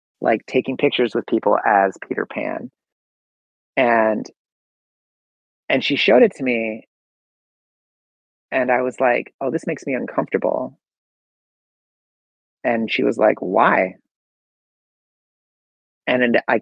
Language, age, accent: English, 30-49, American